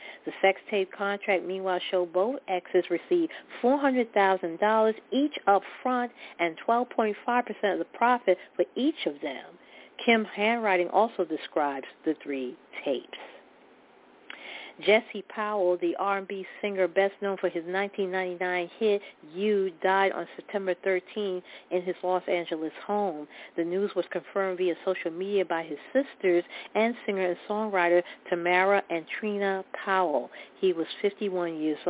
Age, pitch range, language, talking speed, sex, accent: 40-59, 175-200 Hz, English, 135 wpm, female, American